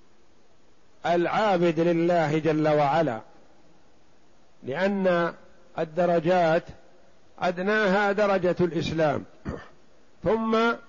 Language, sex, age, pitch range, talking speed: Arabic, male, 50-69, 150-180 Hz, 55 wpm